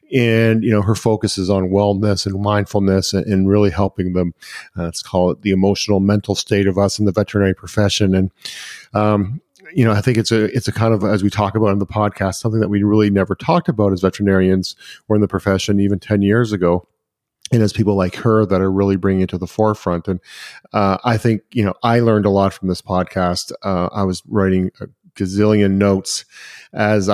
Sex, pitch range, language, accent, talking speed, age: male, 95-105 Hz, English, American, 220 wpm, 40-59